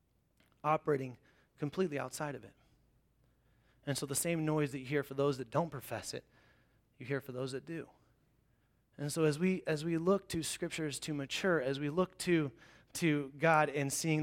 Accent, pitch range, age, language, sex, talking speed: American, 140-165 Hz, 30-49, English, male, 185 wpm